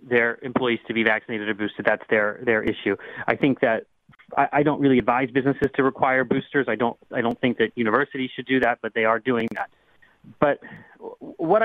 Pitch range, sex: 115-145 Hz, male